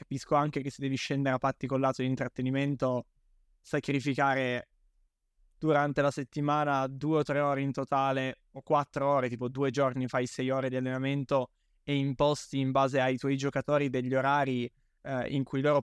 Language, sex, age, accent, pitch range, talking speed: Italian, male, 20-39, native, 130-145 Hz, 175 wpm